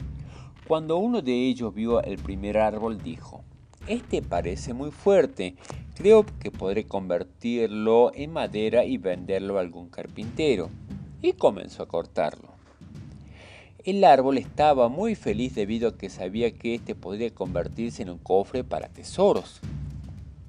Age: 40-59